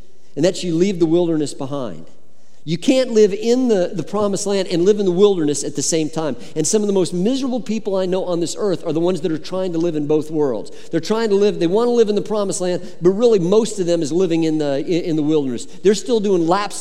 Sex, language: male, English